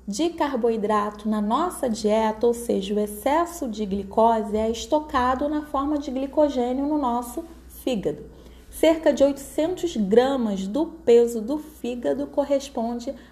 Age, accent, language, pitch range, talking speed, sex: 20-39, Brazilian, Portuguese, 225-275 Hz, 130 wpm, female